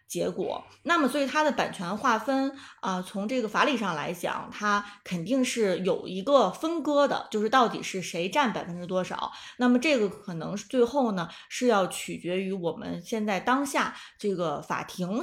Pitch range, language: 180-250 Hz, Chinese